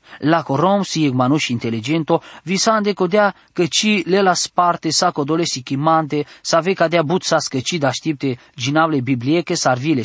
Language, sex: English, male